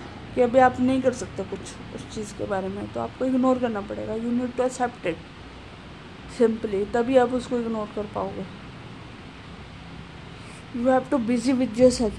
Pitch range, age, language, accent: 210-255 Hz, 20-39, Hindi, native